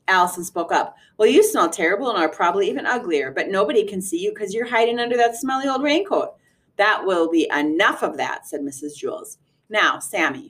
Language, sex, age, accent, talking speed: English, female, 30-49, American, 205 wpm